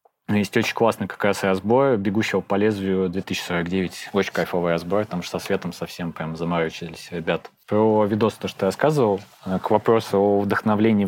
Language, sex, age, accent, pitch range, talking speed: Russian, male, 20-39, native, 95-110 Hz, 170 wpm